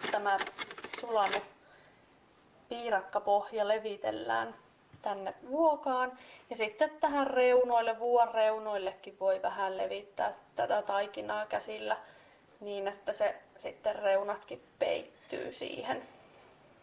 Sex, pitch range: female, 200-250 Hz